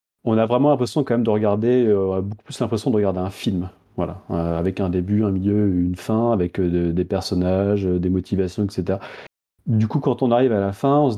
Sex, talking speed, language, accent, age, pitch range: male, 230 wpm, French, French, 30-49, 95-115 Hz